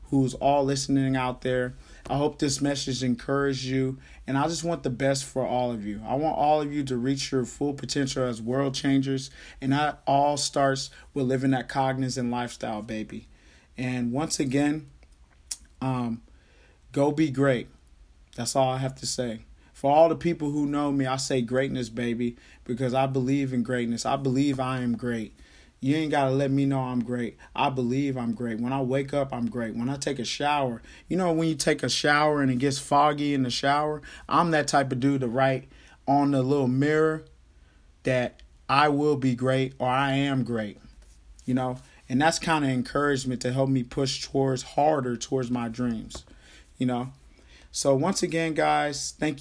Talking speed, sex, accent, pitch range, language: 195 wpm, male, American, 125-140 Hz, English